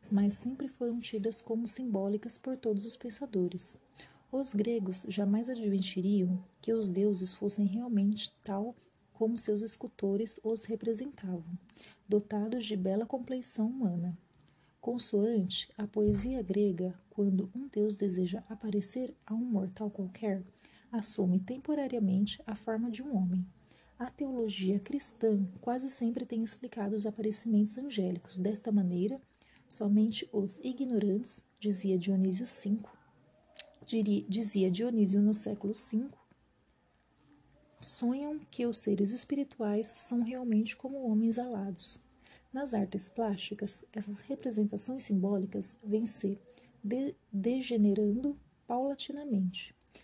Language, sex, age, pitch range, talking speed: Portuguese, female, 40-59, 200-240 Hz, 115 wpm